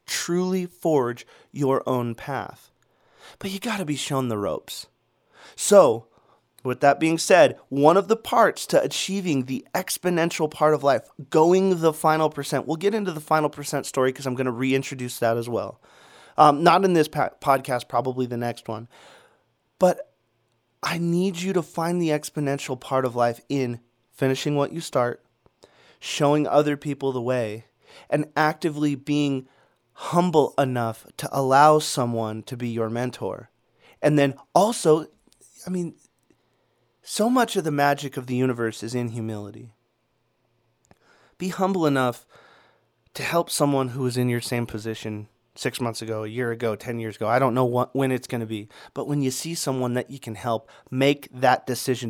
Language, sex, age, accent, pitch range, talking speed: English, male, 30-49, American, 120-155 Hz, 170 wpm